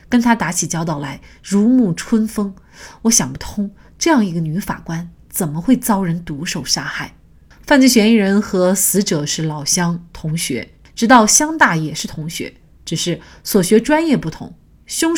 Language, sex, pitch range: Chinese, female, 165-235 Hz